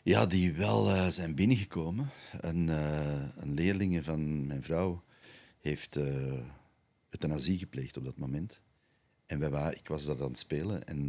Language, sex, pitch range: Dutch, male, 75-105 Hz